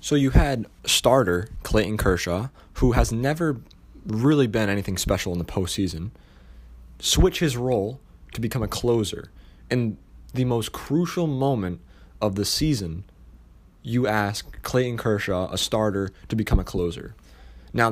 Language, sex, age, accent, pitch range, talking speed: English, male, 20-39, American, 90-115 Hz, 140 wpm